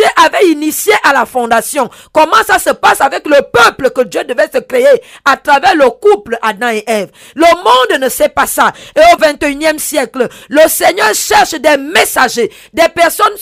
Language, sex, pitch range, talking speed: French, female, 280-390 Hz, 185 wpm